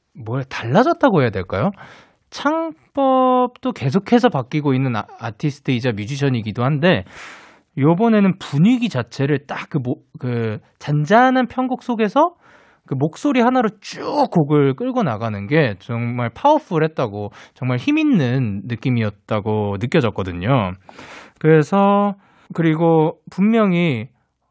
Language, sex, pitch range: Korean, male, 110-170 Hz